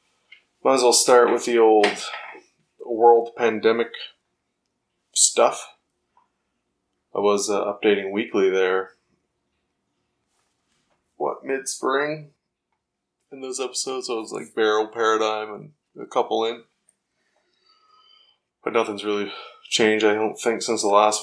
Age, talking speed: 20-39, 115 wpm